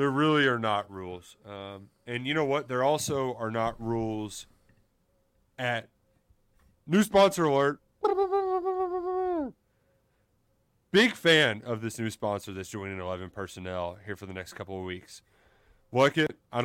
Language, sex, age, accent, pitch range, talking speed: English, male, 30-49, American, 110-140 Hz, 145 wpm